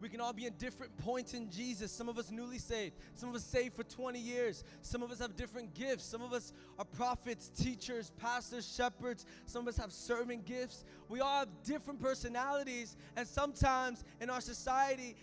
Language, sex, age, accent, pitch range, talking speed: English, male, 20-39, American, 220-250 Hz, 200 wpm